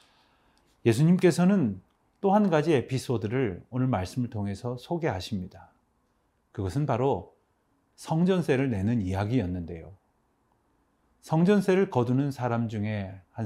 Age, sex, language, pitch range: 40-59, male, Korean, 95-140 Hz